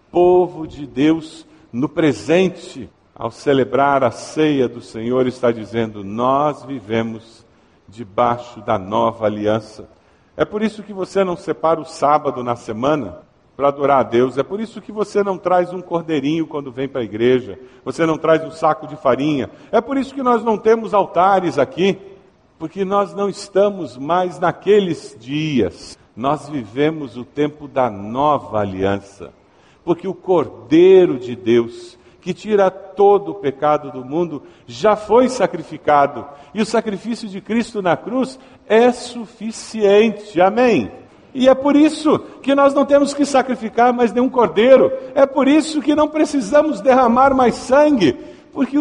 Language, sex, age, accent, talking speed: Portuguese, male, 50-69, Brazilian, 155 wpm